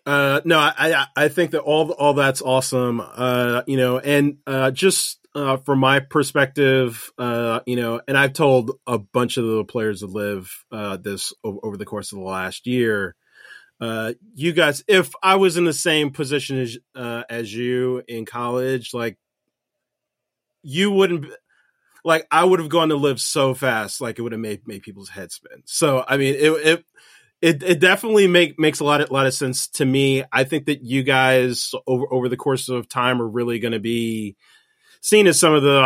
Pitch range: 120-150 Hz